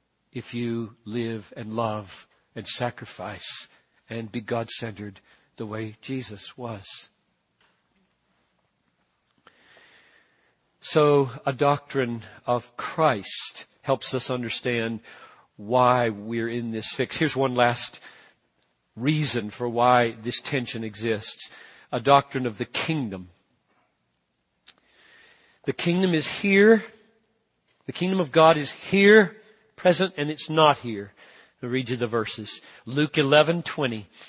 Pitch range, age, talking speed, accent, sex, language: 115-170 Hz, 50-69, 115 wpm, American, male, English